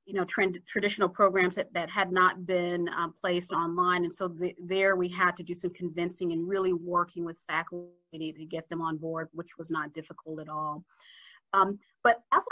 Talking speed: 200 wpm